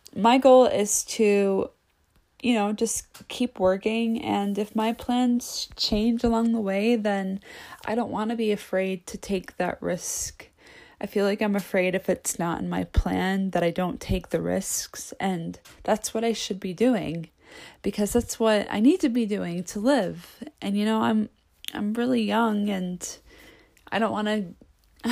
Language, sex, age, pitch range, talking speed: English, female, 20-39, 185-235 Hz, 175 wpm